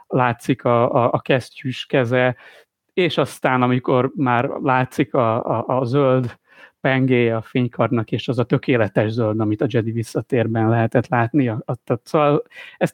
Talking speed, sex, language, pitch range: 140 wpm, male, Hungarian, 120-150 Hz